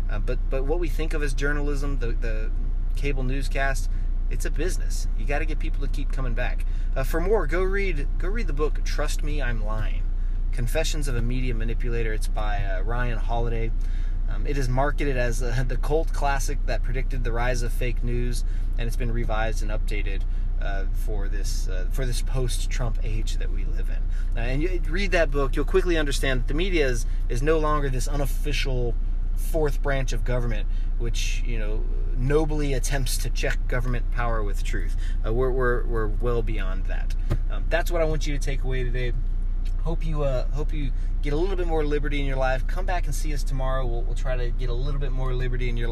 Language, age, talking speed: English, 20-39, 215 wpm